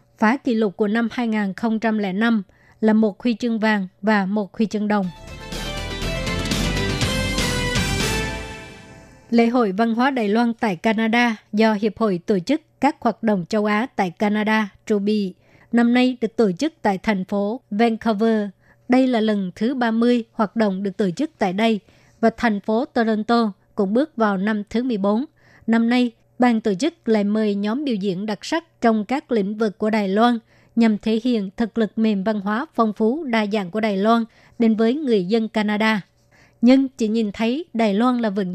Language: Vietnamese